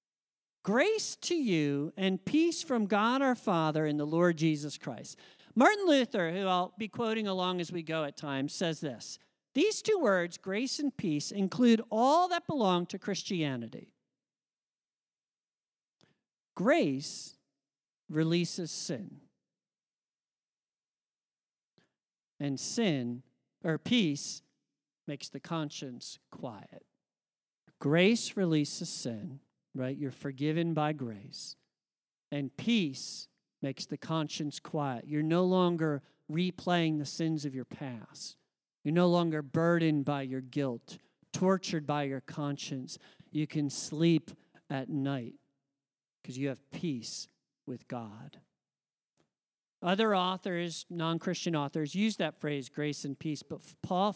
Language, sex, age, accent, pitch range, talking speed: English, male, 50-69, American, 140-185 Hz, 120 wpm